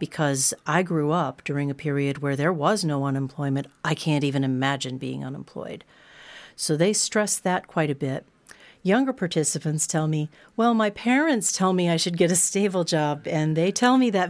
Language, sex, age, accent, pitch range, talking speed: Czech, female, 40-59, American, 150-200 Hz, 190 wpm